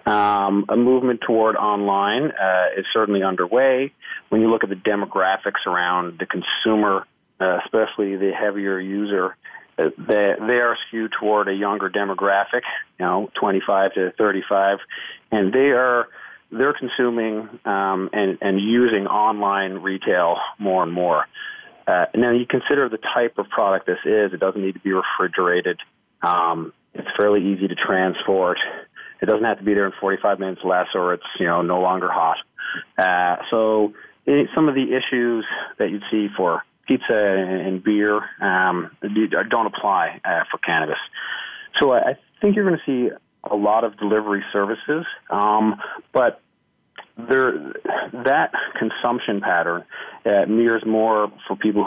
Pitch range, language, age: 95-110 Hz, English, 40-59